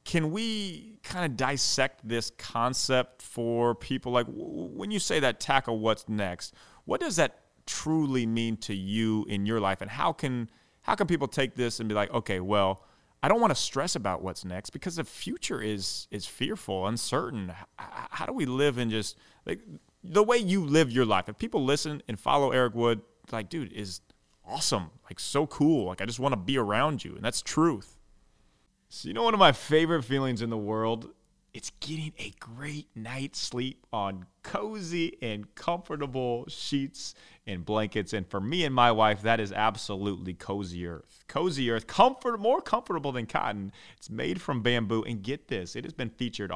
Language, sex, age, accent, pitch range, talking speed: English, male, 30-49, American, 105-145 Hz, 185 wpm